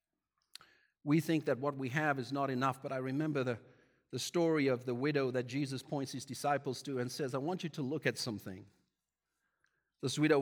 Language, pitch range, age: English, 130-160 Hz, 50-69